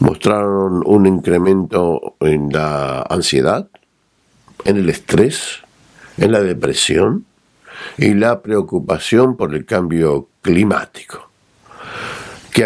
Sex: male